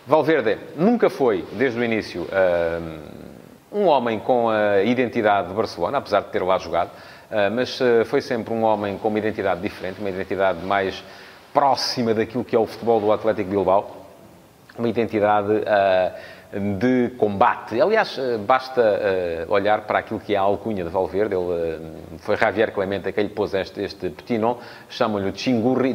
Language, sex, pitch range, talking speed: English, male, 100-125 Hz, 155 wpm